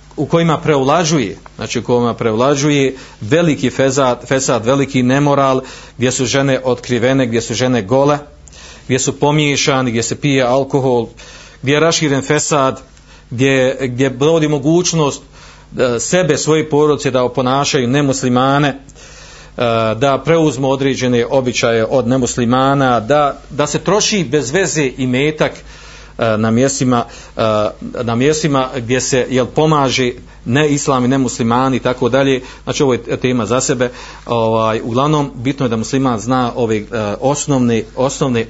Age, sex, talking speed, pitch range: 40-59, male, 130 wpm, 115-140 Hz